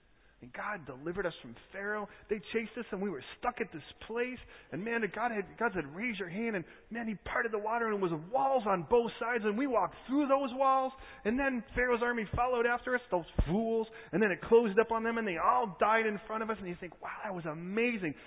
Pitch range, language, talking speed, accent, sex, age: 195-245 Hz, English, 245 wpm, American, male, 30-49